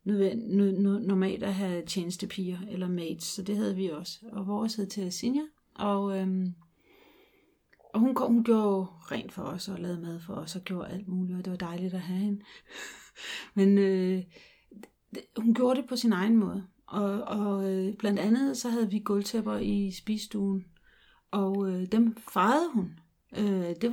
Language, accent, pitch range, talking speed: Danish, native, 185-220 Hz, 175 wpm